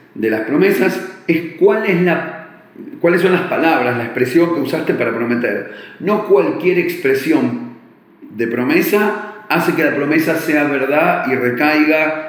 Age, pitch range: 40-59, 135-195 Hz